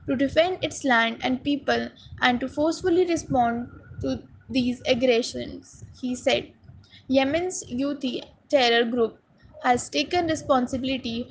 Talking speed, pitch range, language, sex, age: 115 wpm, 245-280 Hz, English, female, 20-39